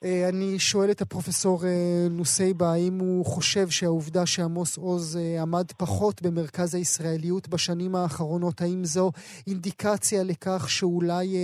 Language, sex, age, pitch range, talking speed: Hebrew, male, 30-49, 170-195 Hz, 115 wpm